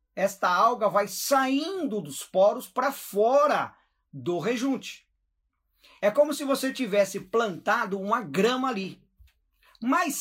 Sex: male